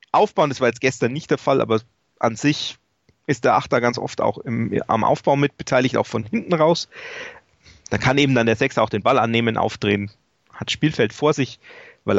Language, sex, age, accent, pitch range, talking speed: German, male, 30-49, German, 115-145 Hz, 205 wpm